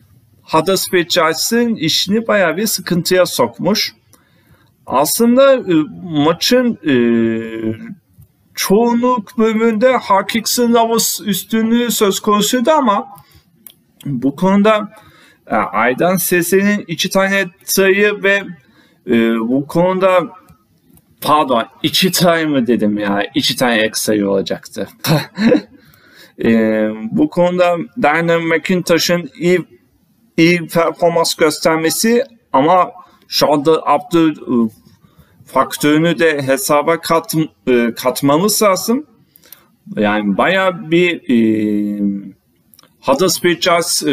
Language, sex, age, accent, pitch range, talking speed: Turkish, male, 40-59, native, 130-195 Hz, 90 wpm